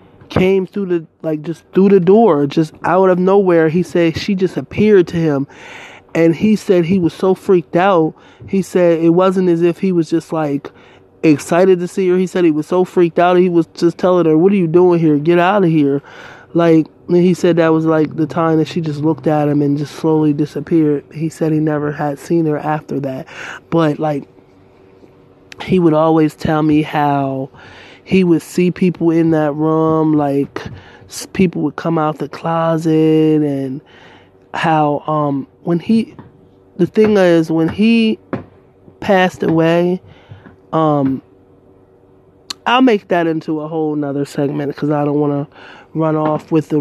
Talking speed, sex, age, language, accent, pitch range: 180 wpm, male, 20-39, English, American, 150-180 Hz